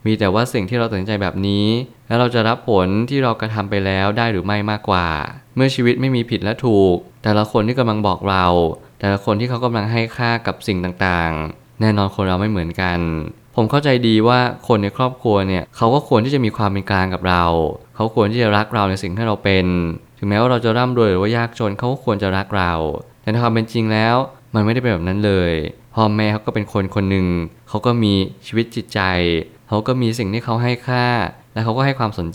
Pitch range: 95-120 Hz